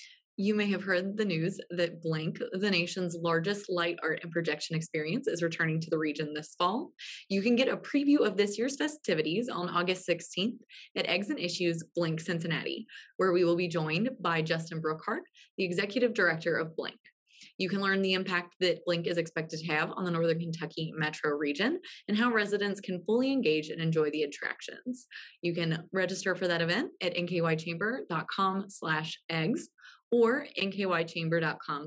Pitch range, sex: 165-240 Hz, female